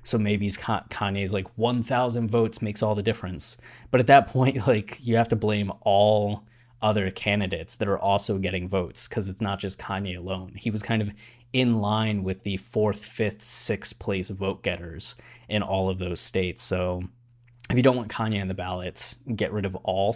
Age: 20-39